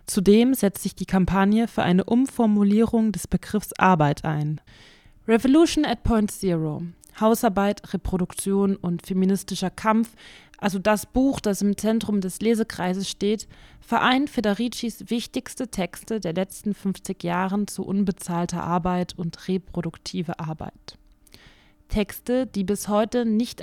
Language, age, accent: German, 20-39, German